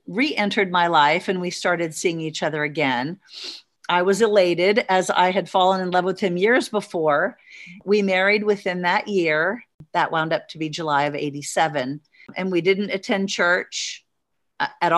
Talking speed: 170 wpm